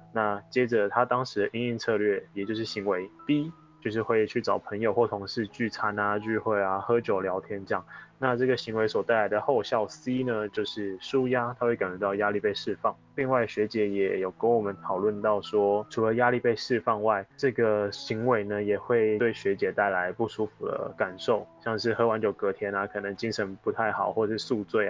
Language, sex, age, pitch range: Chinese, male, 10-29, 105-120 Hz